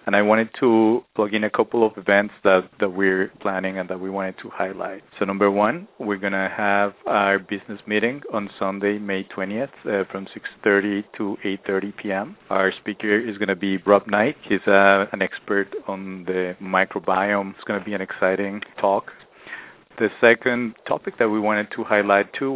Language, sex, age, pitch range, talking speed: English, male, 40-59, 95-105 Hz, 185 wpm